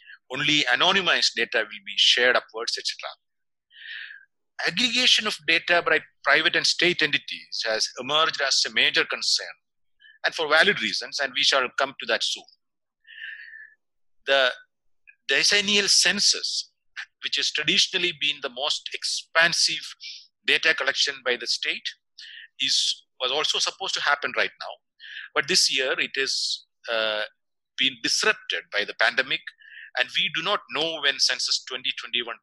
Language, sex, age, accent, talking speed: English, male, 50-69, Indian, 140 wpm